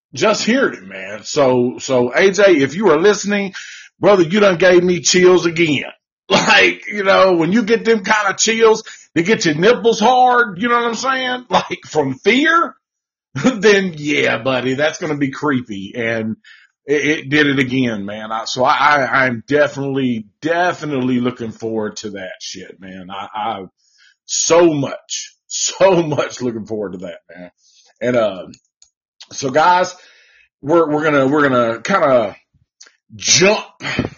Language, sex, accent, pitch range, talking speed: English, male, American, 135-195 Hz, 165 wpm